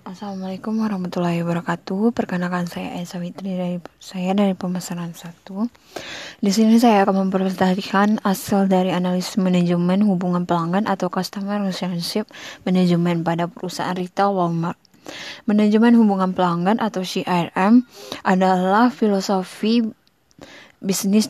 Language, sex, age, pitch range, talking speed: Indonesian, female, 20-39, 180-210 Hz, 110 wpm